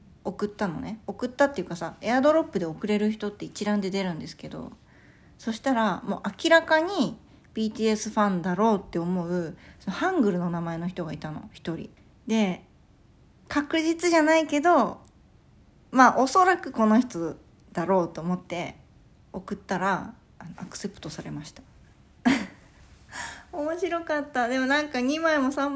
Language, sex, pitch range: Japanese, female, 185-250 Hz